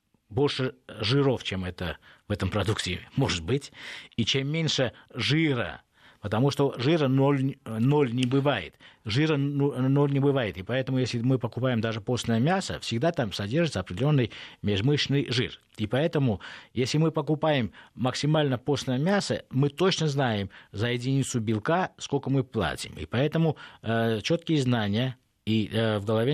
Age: 50-69